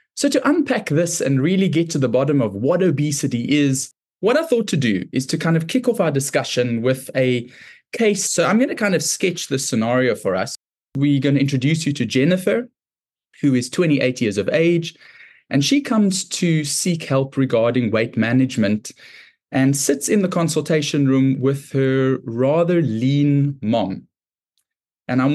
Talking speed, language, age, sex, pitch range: 180 wpm, English, 20-39, male, 125-165 Hz